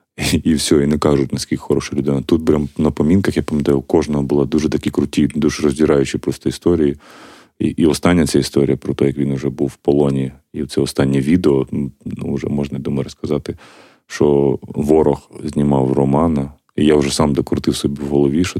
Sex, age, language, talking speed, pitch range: male, 30-49, Ukrainian, 195 wpm, 70-75 Hz